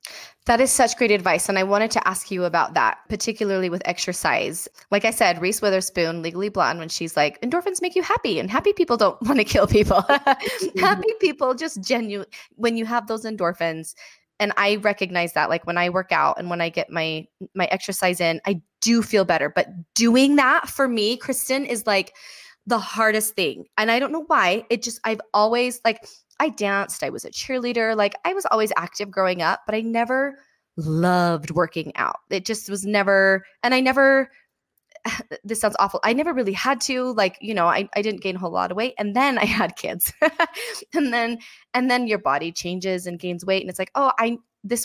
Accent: American